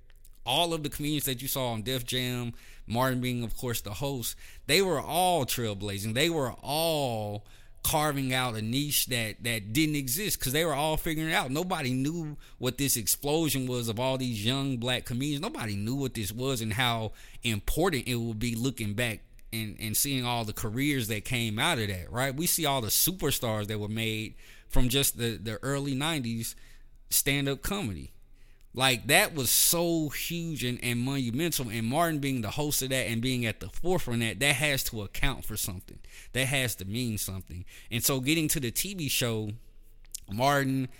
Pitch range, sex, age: 110-140 Hz, male, 20-39